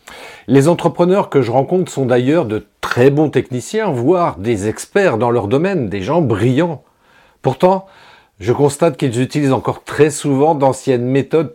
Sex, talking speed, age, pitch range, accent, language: male, 155 wpm, 40-59, 120-160 Hz, French, French